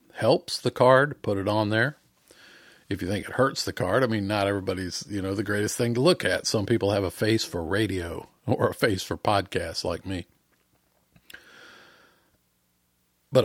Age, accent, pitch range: 50-69, American, 95-125 Hz